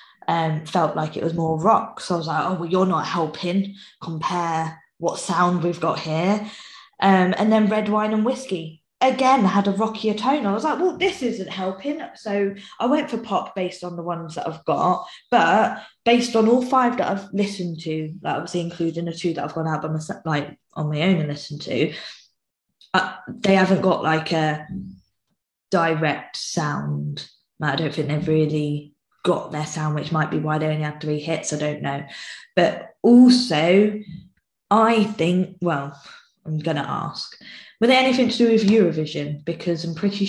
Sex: female